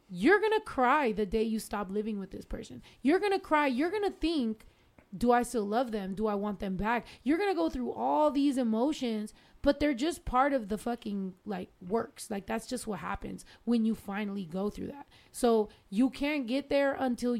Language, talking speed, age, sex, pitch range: English, 220 wpm, 20-39, female, 205-280 Hz